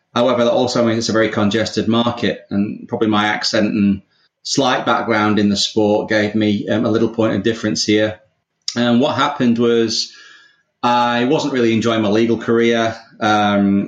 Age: 30-49